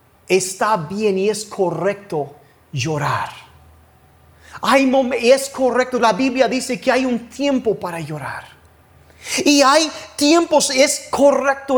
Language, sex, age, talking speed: Spanish, male, 30-49, 125 wpm